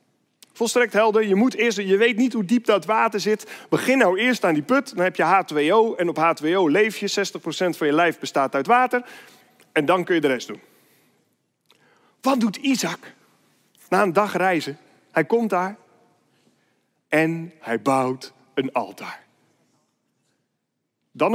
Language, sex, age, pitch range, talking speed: Dutch, male, 40-59, 195-285 Hz, 155 wpm